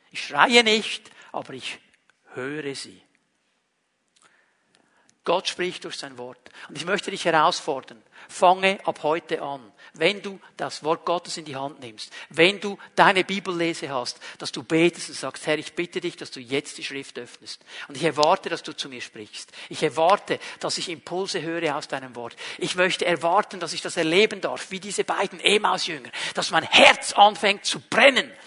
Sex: male